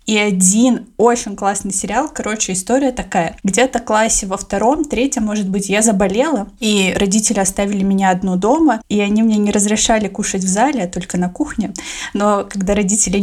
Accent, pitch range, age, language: native, 200-235 Hz, 20-39, Russian